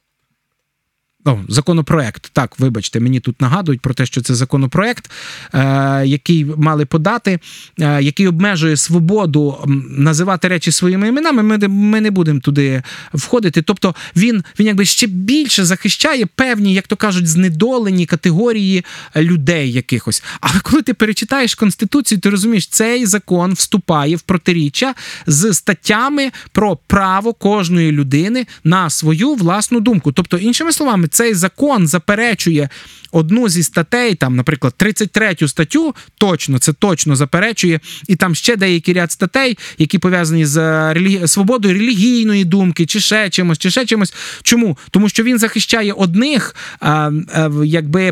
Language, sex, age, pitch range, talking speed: Ukrainian, male, 20-39, 160-215 Hz, 135 wpm